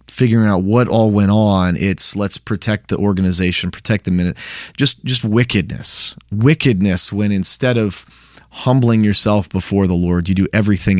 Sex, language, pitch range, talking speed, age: male, English, 90-115 Hz, 160 wpm, 30-49